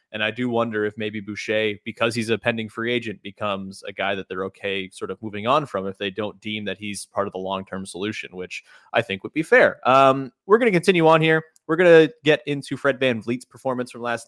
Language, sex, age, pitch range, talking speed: English, male, 30-49, 115-185 Hz, 250 wpm